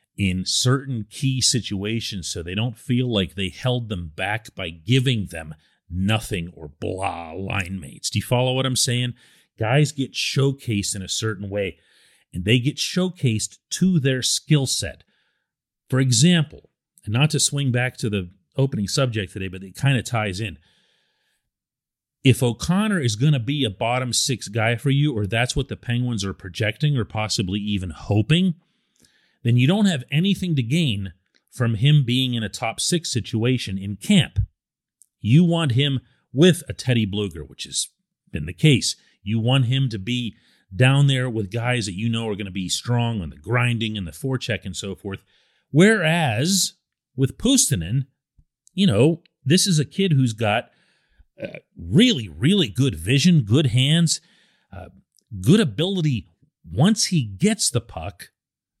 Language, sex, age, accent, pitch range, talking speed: English, male, 40-59, American, 105-145 Hz, 165 wpm